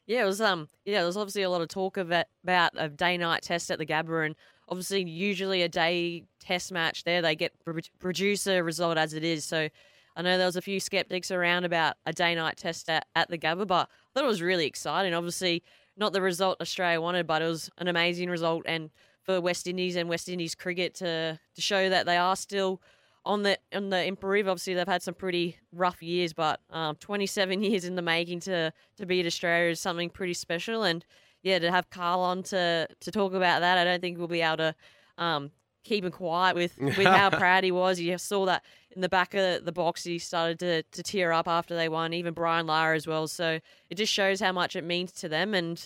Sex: female